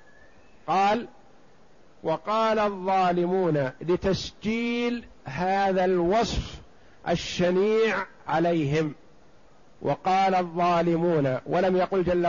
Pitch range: 170-210 Hz